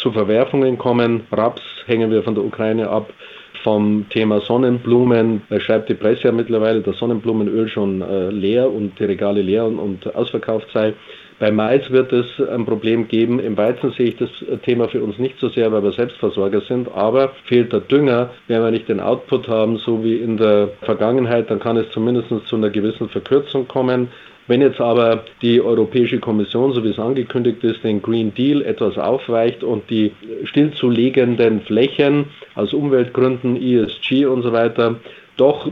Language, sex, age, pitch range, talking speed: German, male, 30-49, 110-125 Hz, 175 wpm